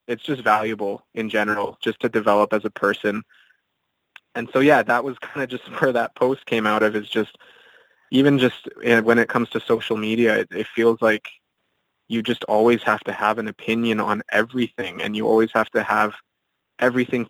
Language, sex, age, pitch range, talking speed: English, male, 20-39, 110-120 Hz, 195 wpm